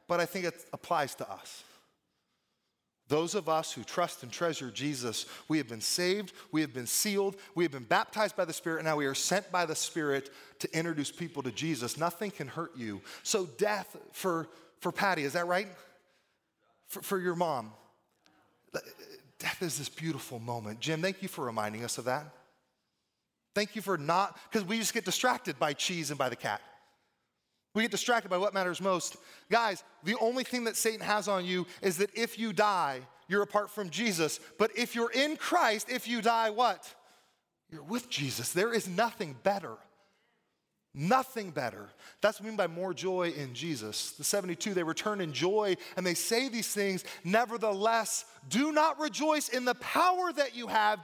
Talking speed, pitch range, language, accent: 190 wpm, 155-220 Hz, English, American